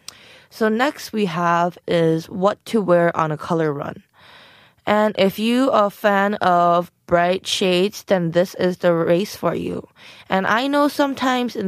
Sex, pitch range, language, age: female, 180-230 Hz, Korean, 20-39